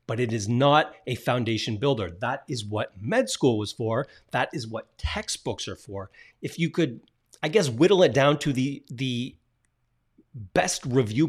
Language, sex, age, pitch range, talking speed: English, male, 30-49, 115-145 Hz, 175 wpm